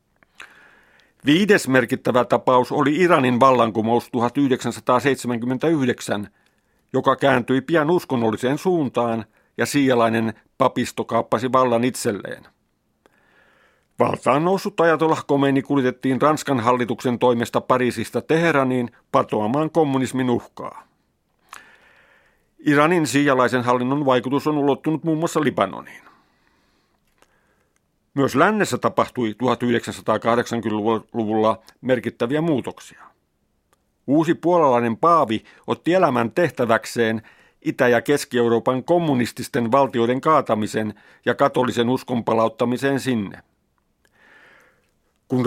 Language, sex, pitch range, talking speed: Finnish, male, 115-145 Hz, 85 wpm